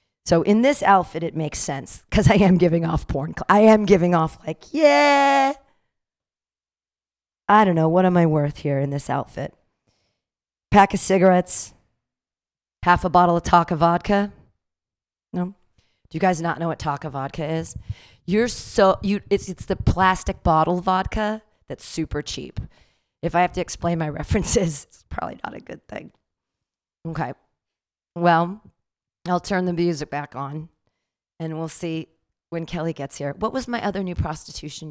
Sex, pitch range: female, 150-190 Hz